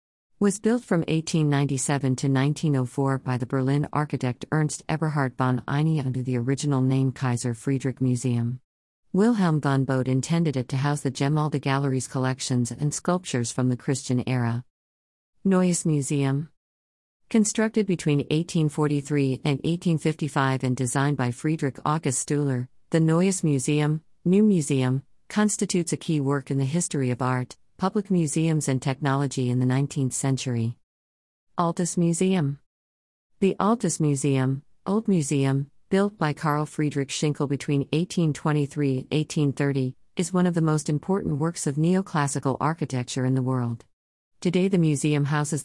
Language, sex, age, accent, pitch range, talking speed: English, female, 50-69, American, 130-160 Hz, 140 wpm